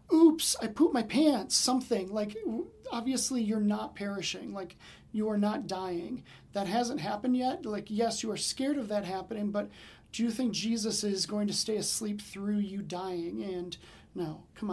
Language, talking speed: English, 180 wpm